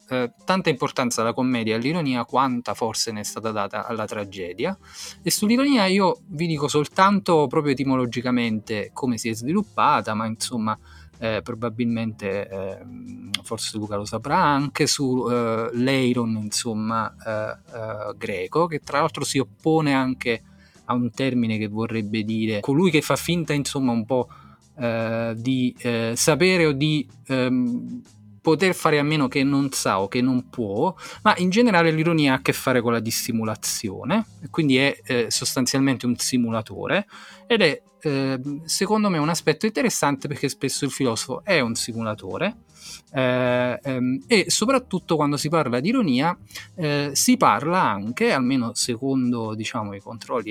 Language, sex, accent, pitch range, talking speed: Italian, male, native, 115-160 Hz, 155 wpm